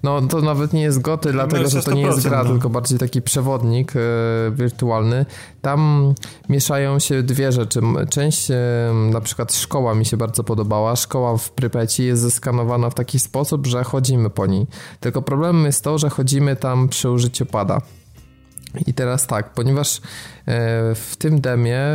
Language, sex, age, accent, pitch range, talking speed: Polish, male, 20-39, native, 120-140 Hz, 160 wpm